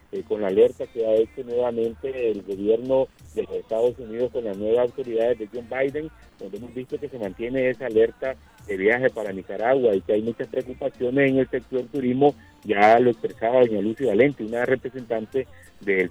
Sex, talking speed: male, 185 wpm